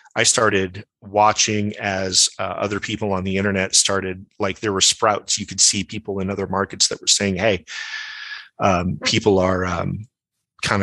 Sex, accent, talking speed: male, American, 170 wpm